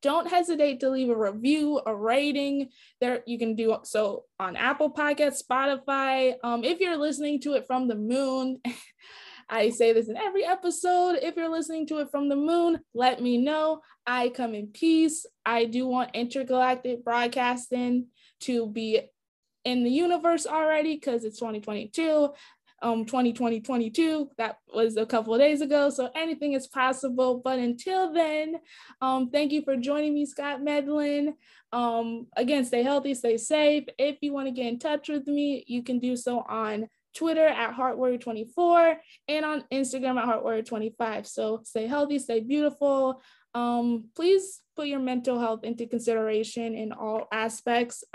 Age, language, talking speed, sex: 20-39, English, 160 wpm, female